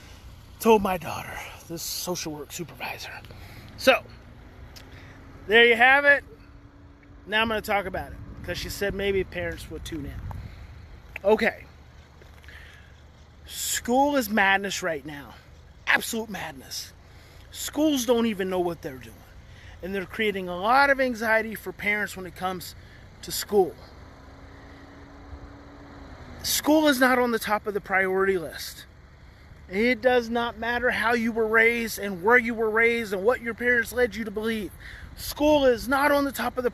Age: 30-49